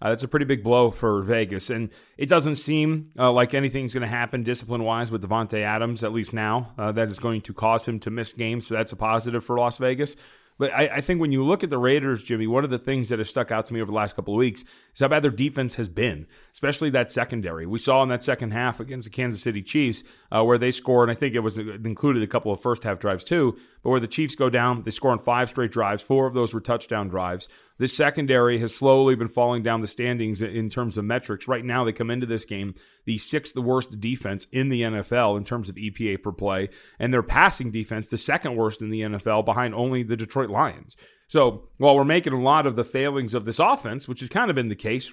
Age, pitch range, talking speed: 30-49, 110-130 Hz, 255 wpm